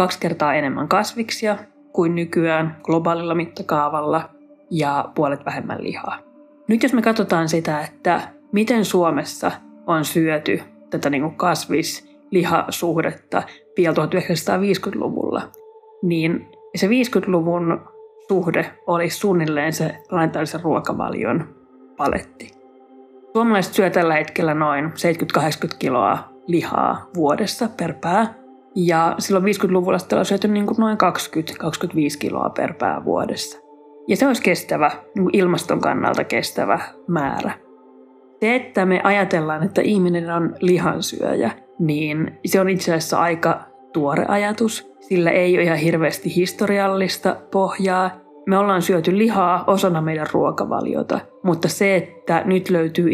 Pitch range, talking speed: 155-195 Hz, 115 wpm